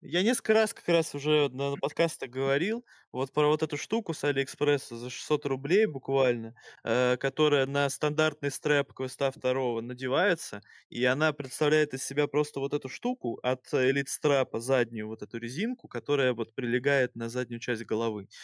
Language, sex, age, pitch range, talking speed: Russian, male, 20-39, 125-155 Hz, 165 wpm